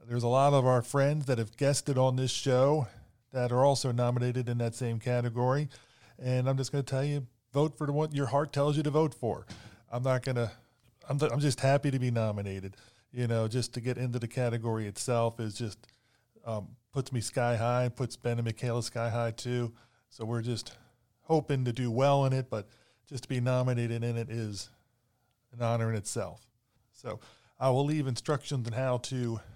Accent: American